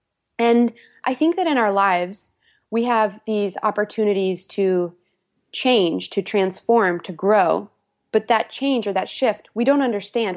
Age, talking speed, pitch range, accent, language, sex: 20-39, 150 wpm, 195-250 Hz, American, English, female